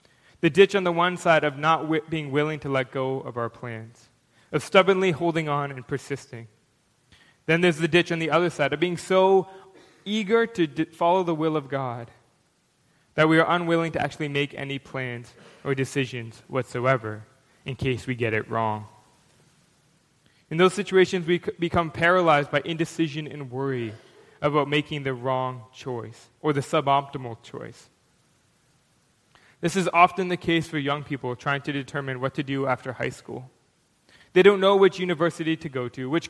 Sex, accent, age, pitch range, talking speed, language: male, American, 20-39, 130-170 Hz, 170 wpm, English